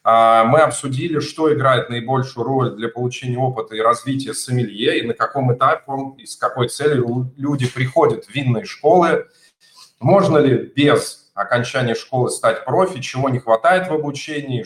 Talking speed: 150 wpm